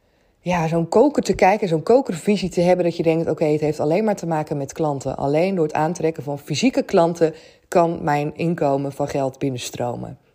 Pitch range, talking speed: 155-240 Hz, 195 wpm